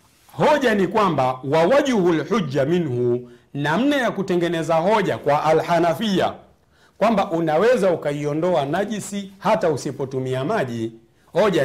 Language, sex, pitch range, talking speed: Swahili, male, 105-165 Hz, 110 wpm